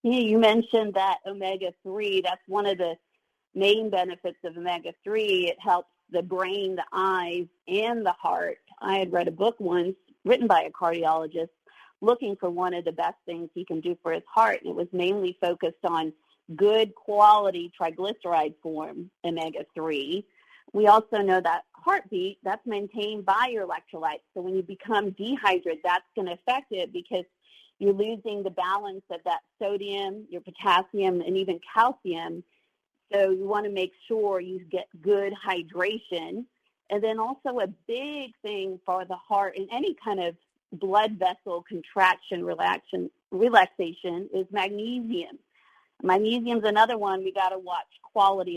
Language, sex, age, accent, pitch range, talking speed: English, female, 40-59, American, 180-220 Hz, 155 wpm